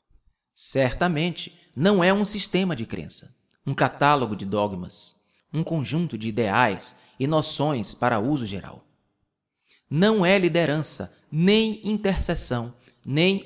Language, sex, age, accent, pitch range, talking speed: Portuguese, male, 30-49, Brazilian, 125-180 Hz, 115 wpm